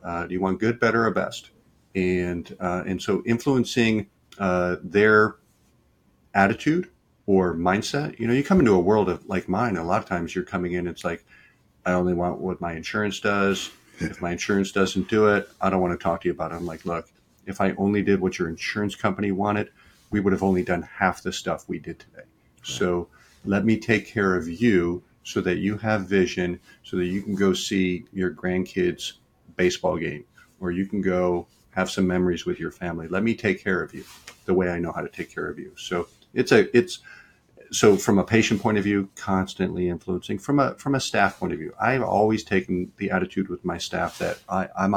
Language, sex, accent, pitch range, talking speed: English, male, American, 90-105 Hz, 215 wpm